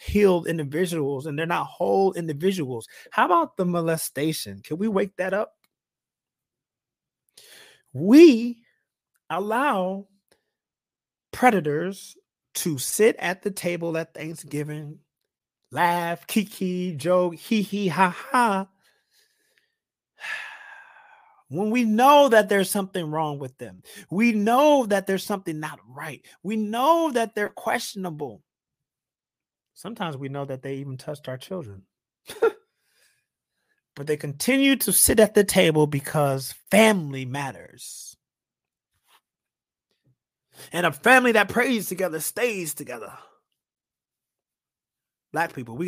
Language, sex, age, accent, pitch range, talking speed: English, male, 30-49, American, 150-220 Hz, 110 wpm